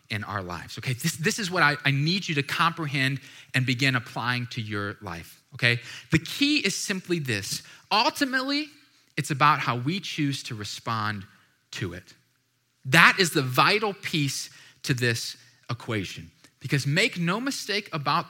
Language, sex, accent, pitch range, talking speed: English, male, American, 130-190 Hz, 160 wpm